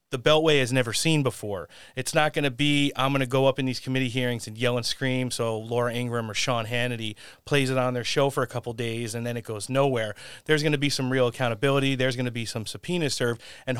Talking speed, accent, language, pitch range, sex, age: 260 wpm, American, English, 120-150 Hz, male, 30-49